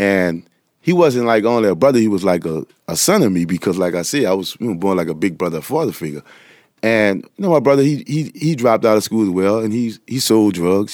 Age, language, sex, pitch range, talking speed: 30-49, English, male, 85-115 Hz, 265 wpm